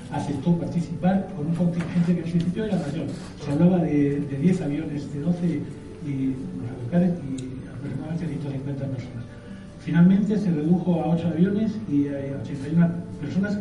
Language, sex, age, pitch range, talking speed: Spanish, male, 60-79, 140-175 Hz, 145 wpm